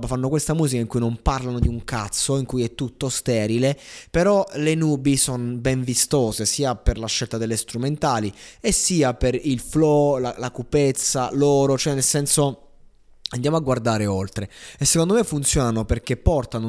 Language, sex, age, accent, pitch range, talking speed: Italian, male, 20-39, native, 110-135 Hz, 175 wpm